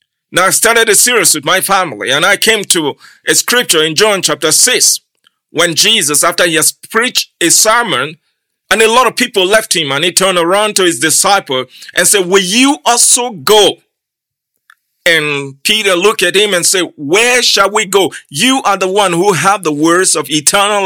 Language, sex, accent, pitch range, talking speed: English, male, Nigerian, 180-240 Hz, 195 wpm